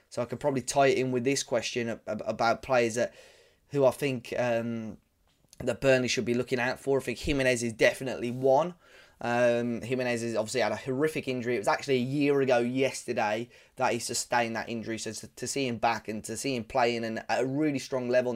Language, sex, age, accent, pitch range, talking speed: English, male, 10-29, British, 120-135 Hz, 215 wpm